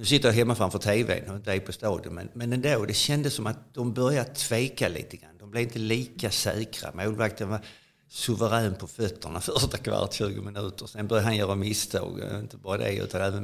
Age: 60-79